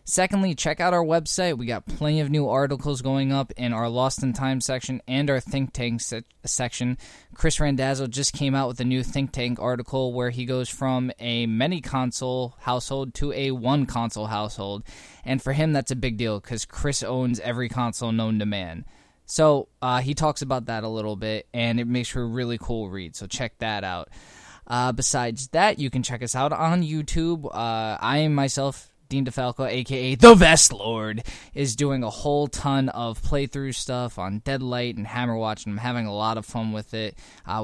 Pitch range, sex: 110-135 Hz, male